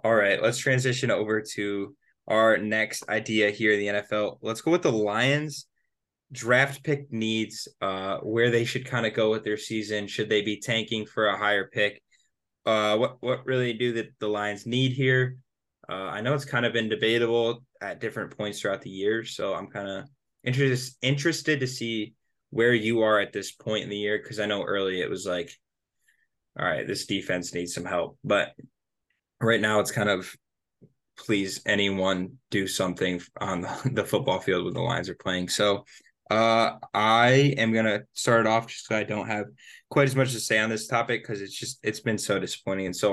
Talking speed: 200 wpm